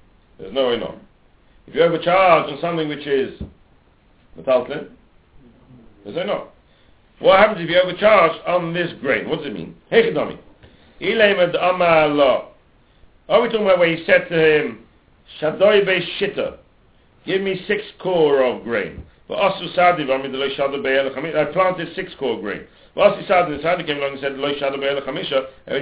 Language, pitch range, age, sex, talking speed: English, 145-195 Hz, 60-79, male, 165 wpm